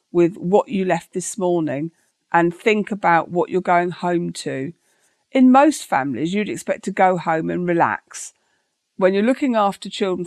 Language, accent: English, British